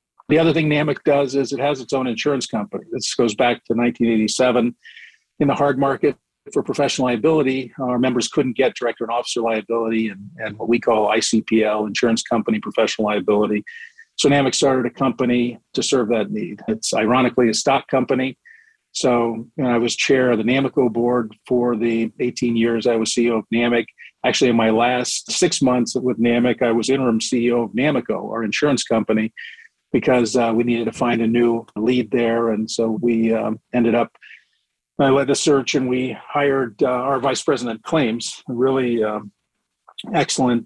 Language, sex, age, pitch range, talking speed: English, male, 40-59, 115-135 Hz, 180 wpm